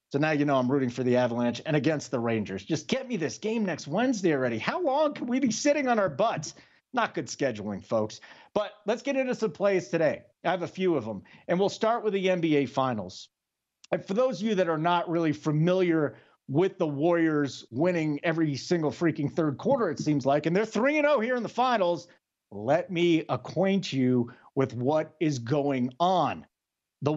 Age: 50-69